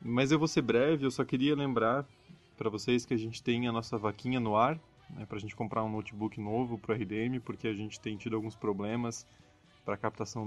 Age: 20-39